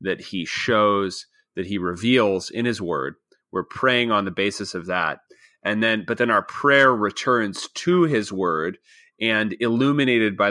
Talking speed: 165 wpm